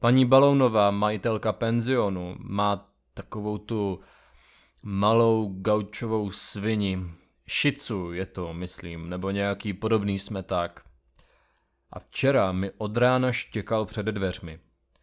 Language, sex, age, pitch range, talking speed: Czech, male, 20-39, 90-115 Hz, 105 wpm